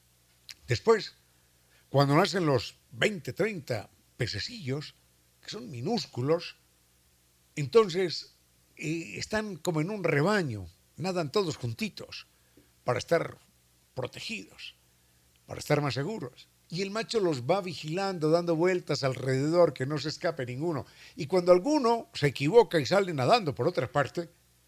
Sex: male